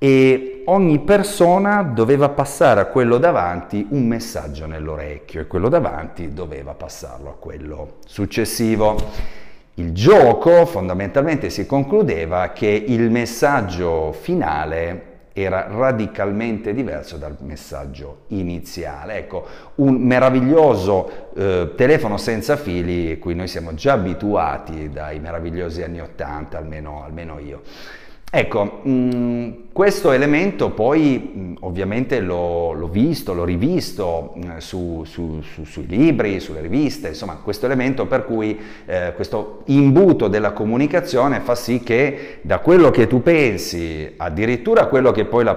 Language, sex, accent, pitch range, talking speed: Italian, male, native, 80-125 Hz, 125 wpm